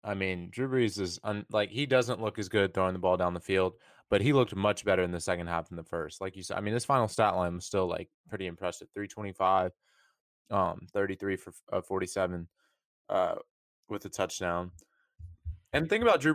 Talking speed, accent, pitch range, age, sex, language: 215 wpm, American, 95-125 Hz, 20-39, male, English